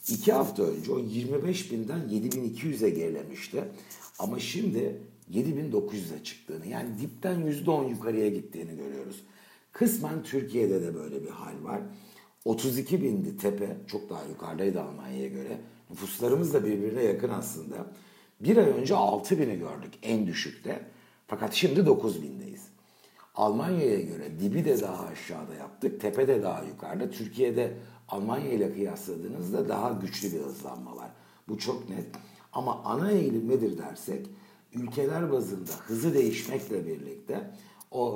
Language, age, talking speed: Turkish, 60-79, 125 wpm